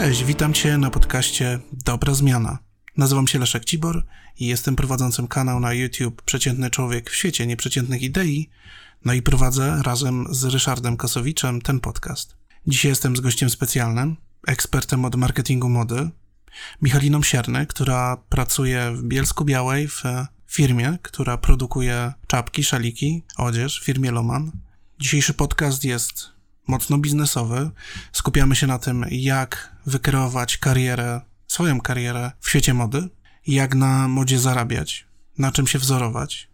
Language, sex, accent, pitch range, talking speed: Polish, male, native, 125-140 Hz, 135 wpm